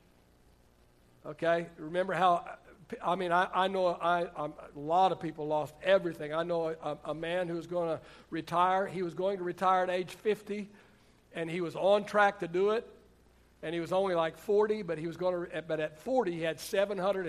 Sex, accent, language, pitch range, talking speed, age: male, American, English, 150-185 Hz, 210 wpm, 60-79